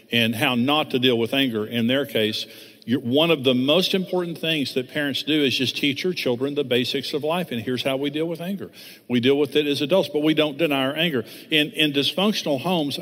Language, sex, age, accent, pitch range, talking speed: English, male, 50-69, American, 130-165 Hz, 235 wpm